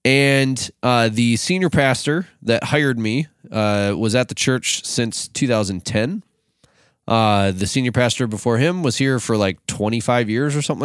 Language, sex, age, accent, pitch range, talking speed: English, male, 20-39, American, 105-135 Hz, 160 wpm